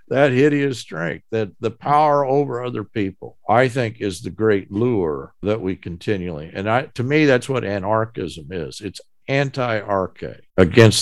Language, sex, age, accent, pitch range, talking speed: English, male, 50-69, American, 100-135 Hz, 165 wpm